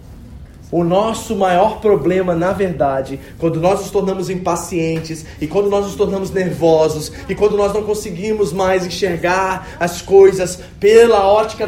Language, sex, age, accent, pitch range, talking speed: Portuguese, male, 20-39, Brazilian, 120-185 Hz, 145 wpm